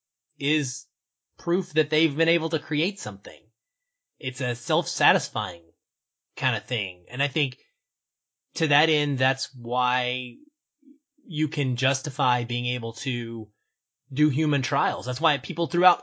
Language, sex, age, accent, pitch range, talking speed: English, male, 30-49, American, 125-155 Hz, 135 wpm